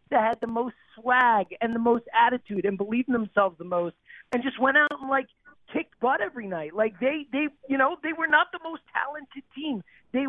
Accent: American